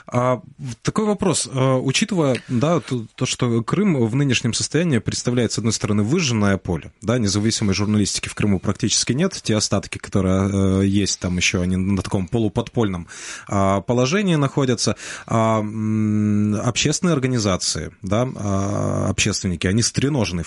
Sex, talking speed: male, 110 wpm